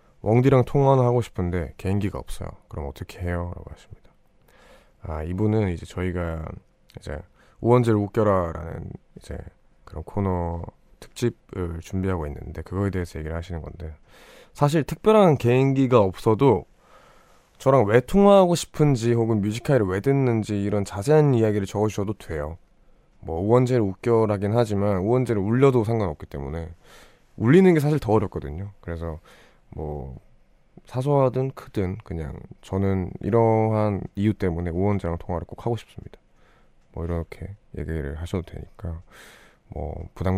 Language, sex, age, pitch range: Korean, male, 20-39, 85-115 Hz